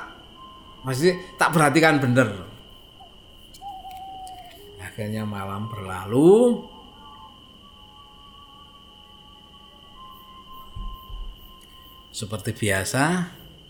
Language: Indonesian